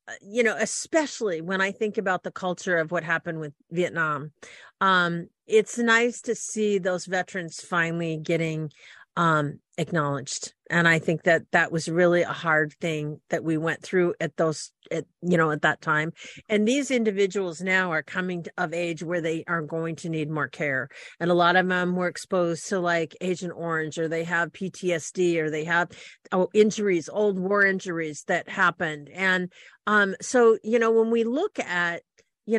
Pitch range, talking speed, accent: 165-205 Hz, 175 wpm, American